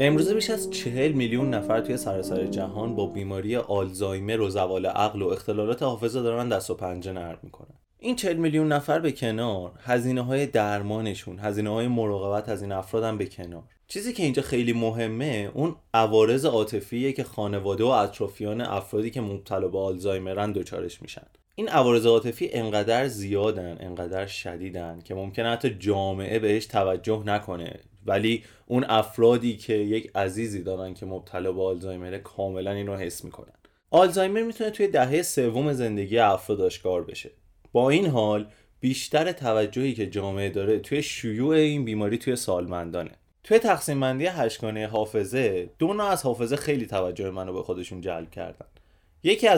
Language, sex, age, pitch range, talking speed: Persian, male, 20-39, 95-130 Hz, 155 wpm